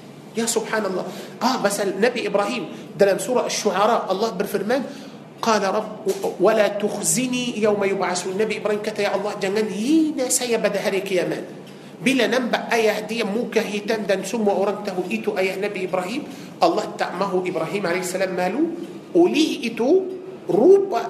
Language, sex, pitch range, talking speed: Malay, male, 185-220 Hz, 135 wpm